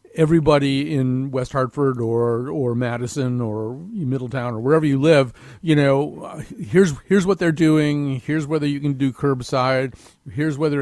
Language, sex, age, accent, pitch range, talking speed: English, male, 40-59, American, 130-165 Hz, 155 wpm